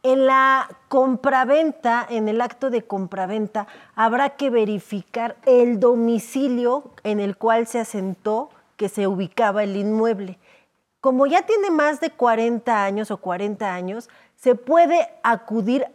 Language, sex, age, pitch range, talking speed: Spanish, female, 30-49, 220-265 Hz, 135 wpm